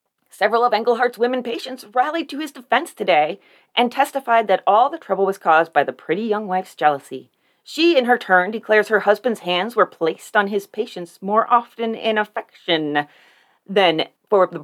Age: 30-49